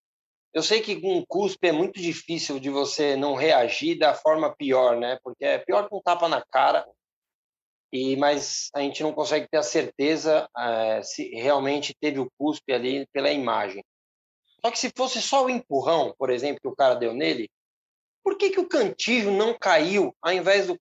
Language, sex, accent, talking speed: Portuguese, male, Brazilian, 195 wpm